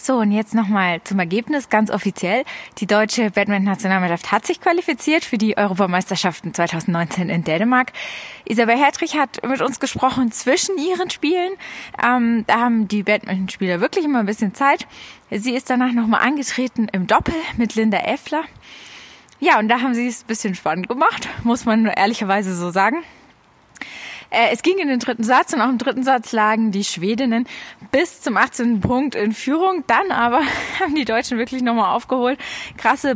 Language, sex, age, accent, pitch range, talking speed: German, female, 20-39, German, 215-285 Hz, 170 wpm